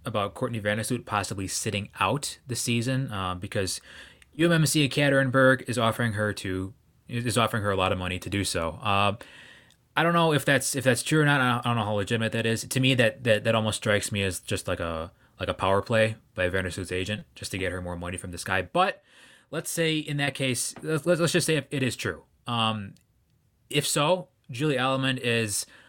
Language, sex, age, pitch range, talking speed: English, male, 20-39, 100-130 Hz, 210 wpm